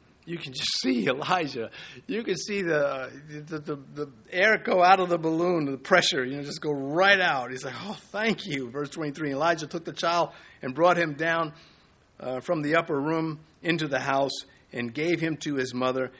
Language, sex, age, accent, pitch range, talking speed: English, male, 50-69, American, 130-175 Hz, 205 wpm